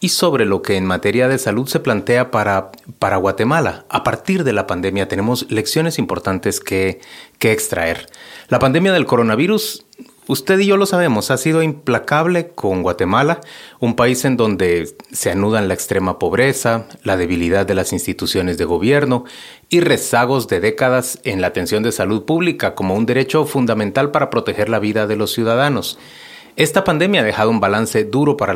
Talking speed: 175 wpm